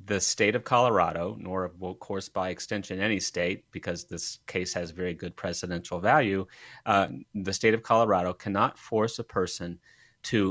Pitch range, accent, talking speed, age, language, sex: 95-115 Hz, American, 165 wpm, 30-49, English, male